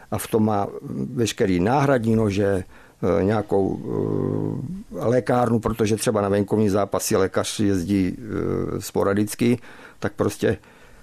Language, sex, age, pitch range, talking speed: Czech, male, 50-69, 105-120 Hz, 105 wpm